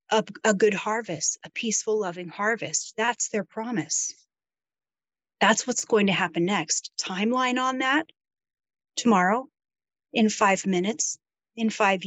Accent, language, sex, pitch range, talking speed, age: American, English, female, 195-245 Hz, 130 wpm, 30-49